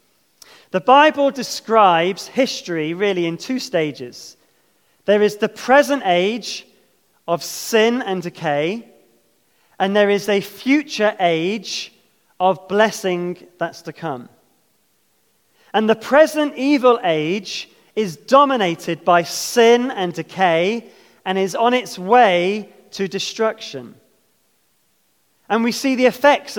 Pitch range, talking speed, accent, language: 180-245 Hz, 115 wpm, British, English